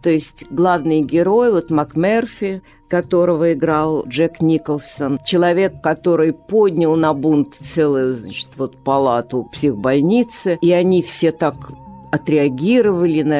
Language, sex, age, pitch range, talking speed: Russian, female, 50-69, 135-170 Hz, 115 wpm